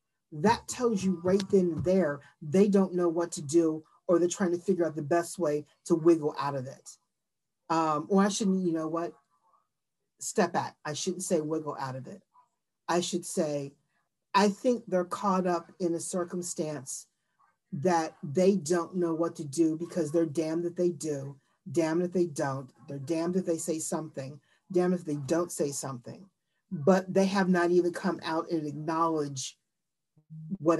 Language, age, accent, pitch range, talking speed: English, 40-59, American, 165-200 Hz, 180 wpm